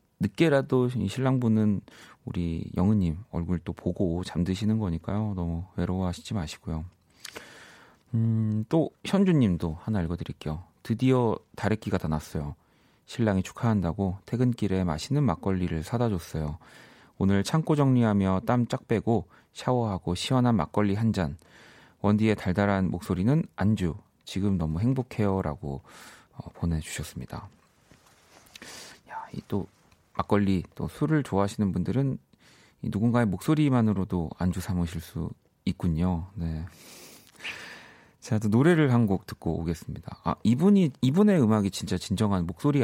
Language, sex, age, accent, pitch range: Korean, male, 30-49, native, 85-120 Hz